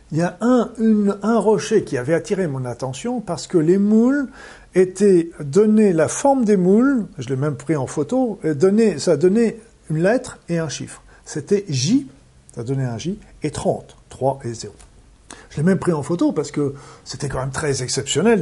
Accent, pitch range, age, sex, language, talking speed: French, 130-195 Hz, 50-69, male, French, 195 wpm